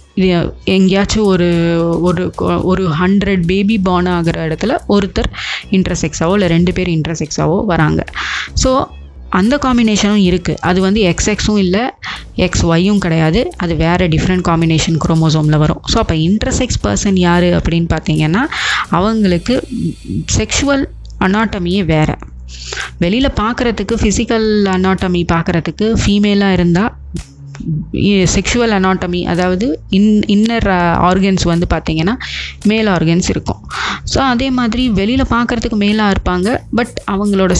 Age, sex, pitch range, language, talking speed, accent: 20-39, female, 170-215 Hz, Tamil, 115 wpm, native